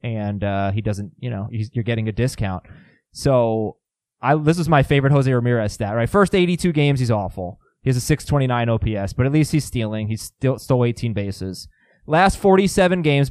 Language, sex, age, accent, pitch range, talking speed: English, male, 20-39, American, 120-175 Hz, 195 wpm